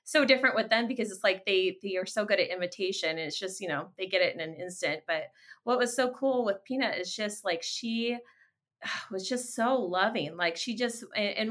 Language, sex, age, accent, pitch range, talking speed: English, female, 30-49, American, 190-260 Hz, 230 wpm